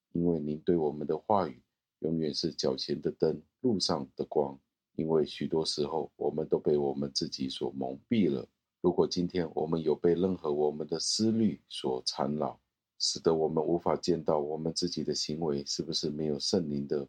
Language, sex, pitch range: Chinese, male, 75-90 Hz